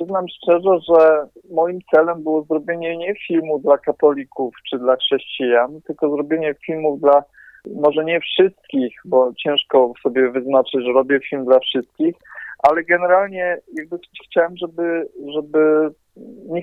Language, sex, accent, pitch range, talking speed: Polish, male, native, 130-165 Hz, 130 wpm